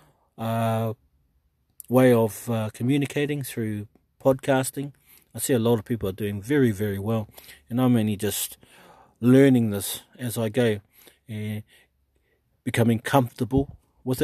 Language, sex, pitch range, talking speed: English, male, 110-130 Hz, 140 wpm